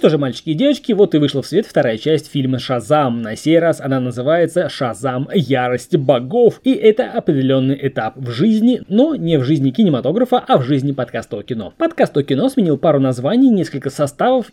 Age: 20-39